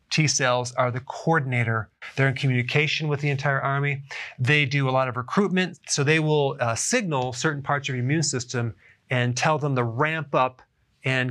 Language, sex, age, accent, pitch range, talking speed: English, male, 30-49, American, 125-155 Hz, 185 wpm